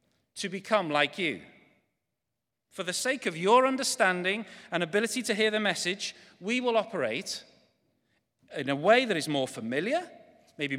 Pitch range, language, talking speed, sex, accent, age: 160-240 Hz, English, 150 wpm, male, British, 40-59